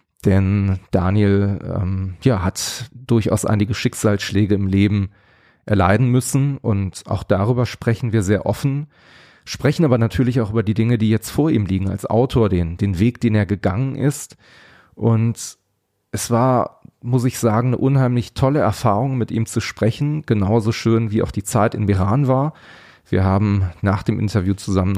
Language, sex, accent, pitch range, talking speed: German, male, German, 100-125 Hz, 165 wpm